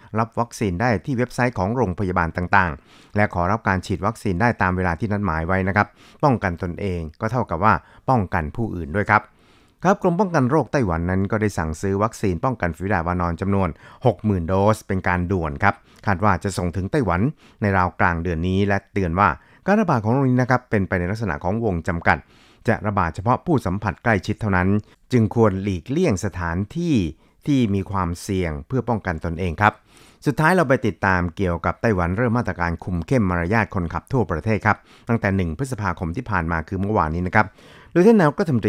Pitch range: 90-120 Hz